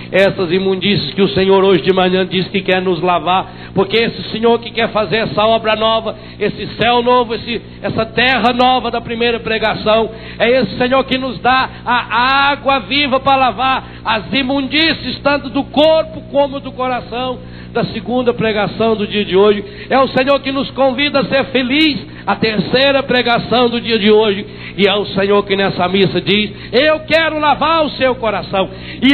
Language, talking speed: Portuguese, 180 wpm